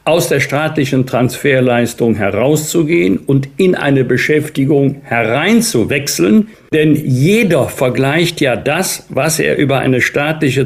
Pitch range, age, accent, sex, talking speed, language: 120-150 Hz, 60-79, German, male, 115 wpm, German